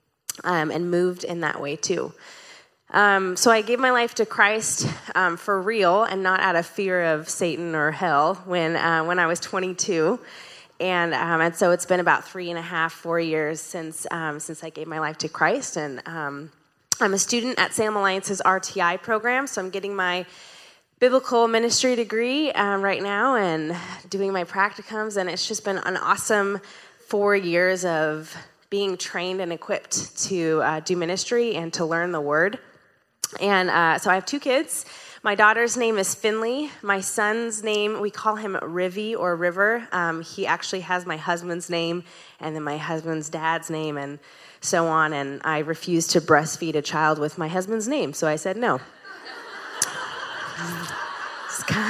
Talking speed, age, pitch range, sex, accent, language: 185 wpm, 20-39, 165-210 Hz, female, American, English